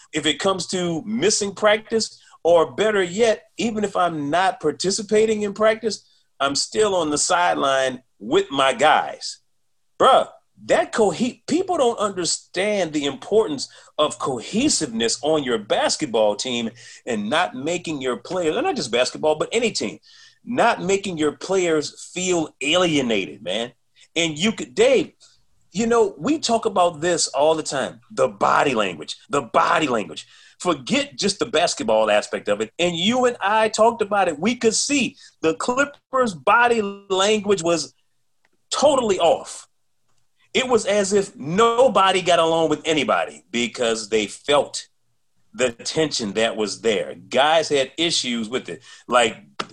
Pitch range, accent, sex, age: 150-220 Hz, American, male, 40-59